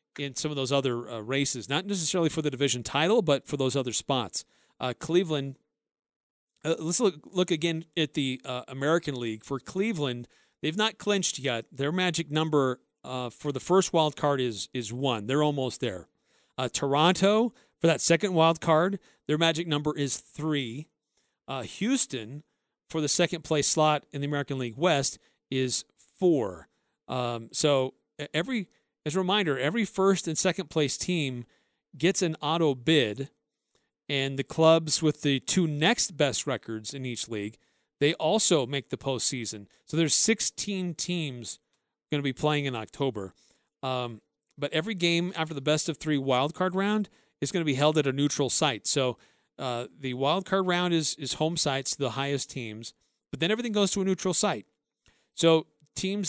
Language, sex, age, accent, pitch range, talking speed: English, male, 40-59, American, 135-170 Hz, 165 wpm